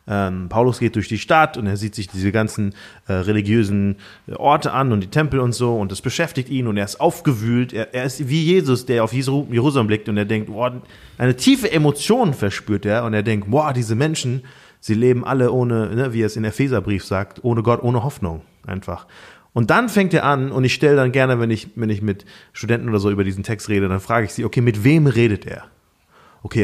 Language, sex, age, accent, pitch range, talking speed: German, male, 30-49, German, 105-135 Hz, 230 wpm